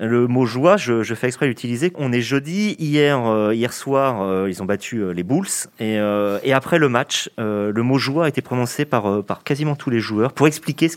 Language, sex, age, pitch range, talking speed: French, male, 30-49, 115-160 Hz, 270 wpm